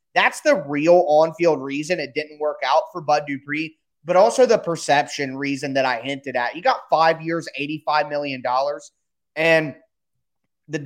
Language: English